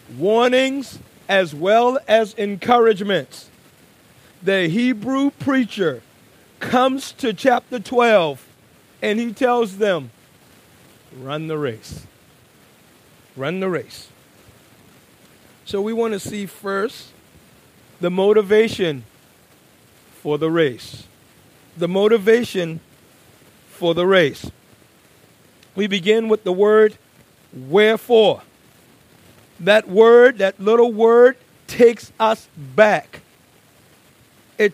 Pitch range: 180-230 Hz